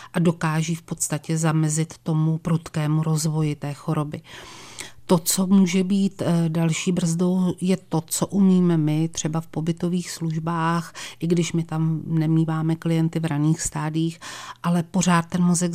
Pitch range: 155-165 Hz